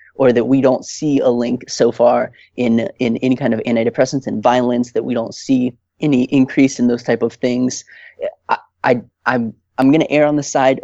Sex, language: male, English